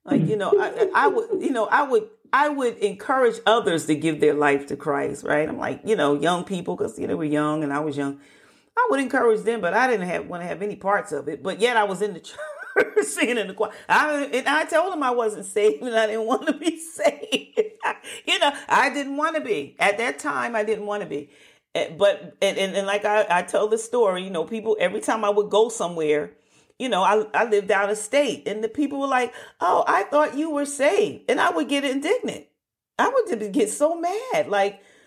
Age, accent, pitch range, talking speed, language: 40-59, American, 210-320 Hz, 245 wpm, English